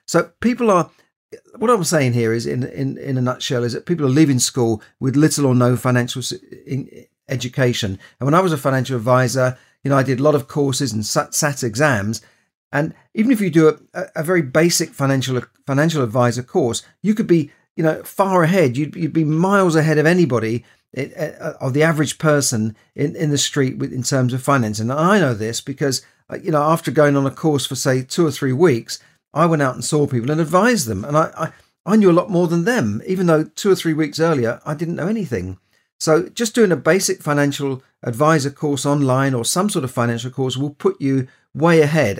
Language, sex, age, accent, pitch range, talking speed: English, male, 50-69, British, 125-165 Hz, 215 wpm